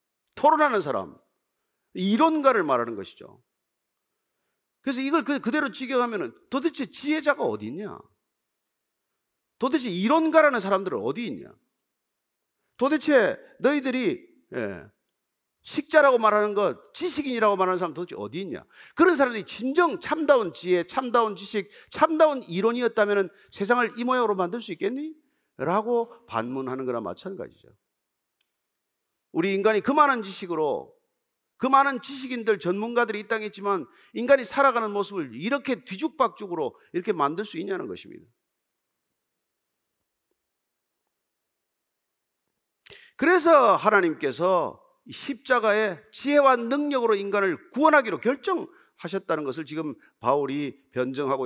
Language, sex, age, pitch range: Korean, male, 40-59, 205-300 Hz